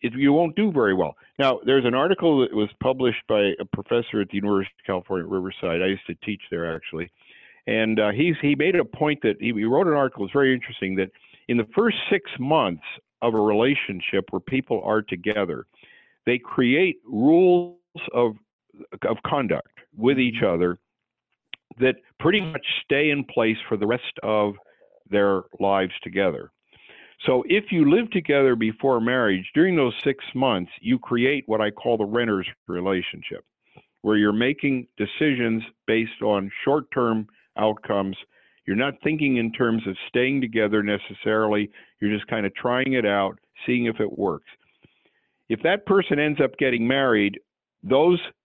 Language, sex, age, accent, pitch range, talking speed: English, male, 50-69, American, 100-140 Hz, 165 wpm